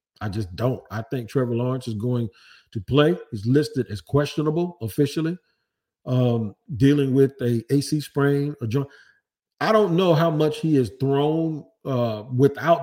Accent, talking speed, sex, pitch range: American, 160 wpm, male, 120-150 Hz